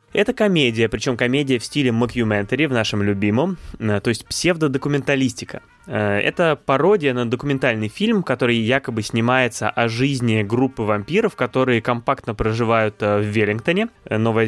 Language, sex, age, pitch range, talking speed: Russian, male, 20-39, 110-140 Hz, 130 wpm